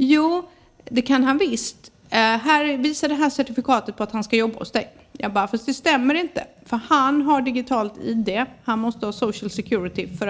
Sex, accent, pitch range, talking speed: female, native, 190-255 Hz, 200 wpm